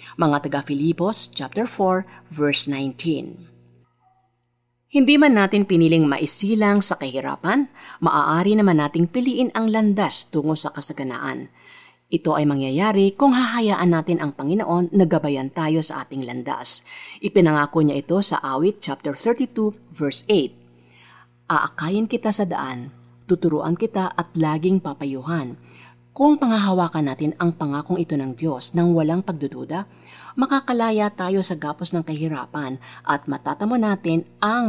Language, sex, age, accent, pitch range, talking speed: Filipino, female, 40-59, native, 140-195 Hz, 130 wpm